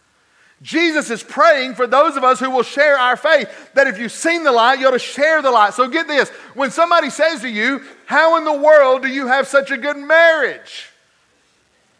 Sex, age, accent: male, 40-59, American